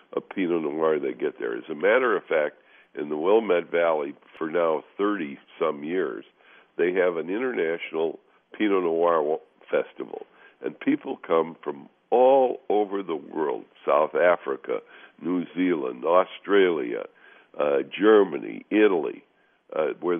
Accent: American